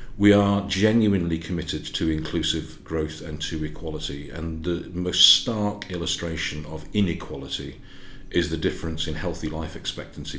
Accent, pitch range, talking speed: British, 75-95 Hz, 140 wpm